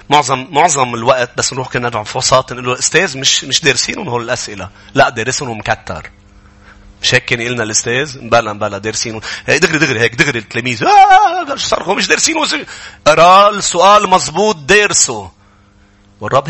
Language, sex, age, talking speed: English, male, 30-49, 150 wpm